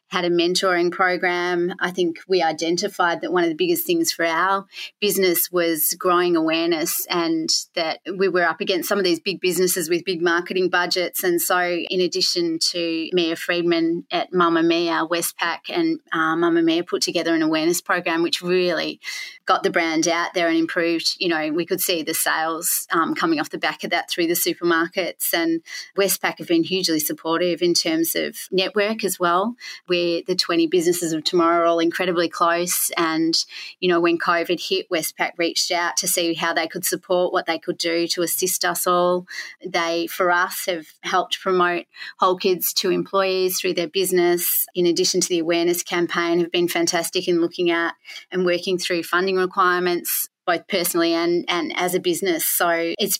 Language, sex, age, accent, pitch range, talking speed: English, female, 30-49, Australian, 170-185 Hz, 185 wpm